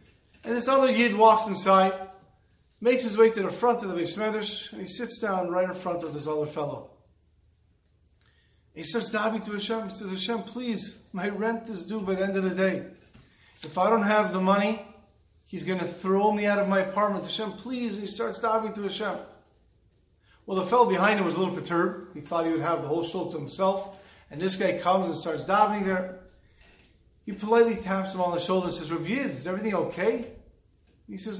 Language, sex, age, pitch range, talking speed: English, male, 40-59, 175-225 Hz, 210 wpm